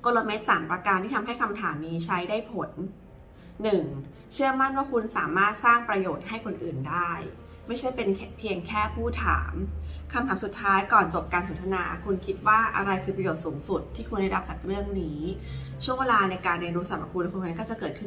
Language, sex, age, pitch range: Thai, female, 20-39, 160-205 Hz